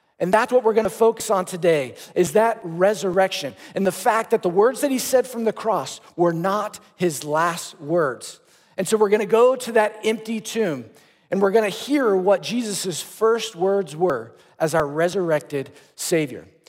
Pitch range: 185-230 Hz